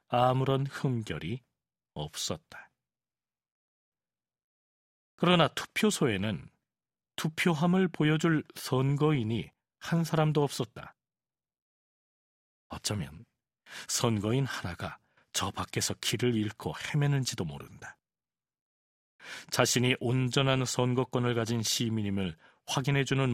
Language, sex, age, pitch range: Korean, male, 40-59, 115-150 Hz